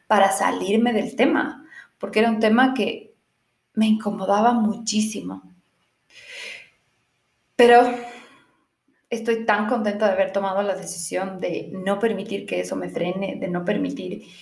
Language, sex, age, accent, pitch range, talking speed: Spanish, female, 20-39, Mexican, 175-215 Hz, 130 wpm